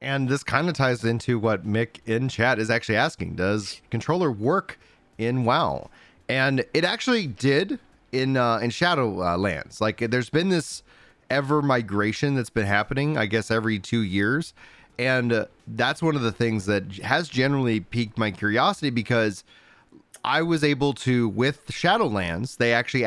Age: 30-49